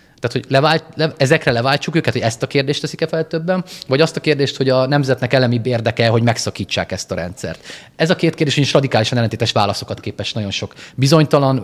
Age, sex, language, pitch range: 30-49, male, Hungarian, 105-140 Hz